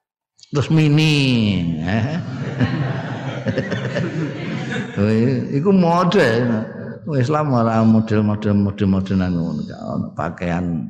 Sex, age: male, 50-69